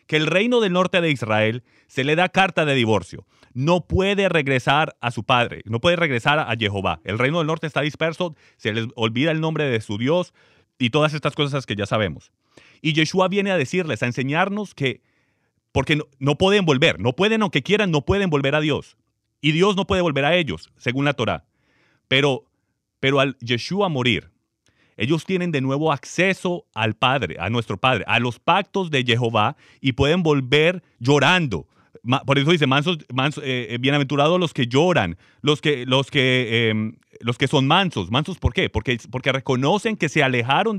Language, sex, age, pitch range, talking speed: English, male, 30-49, 120-170 Hz, 190 wpm